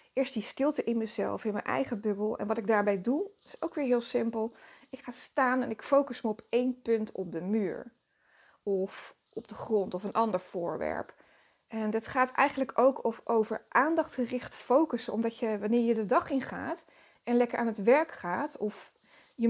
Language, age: Dutch, 20-39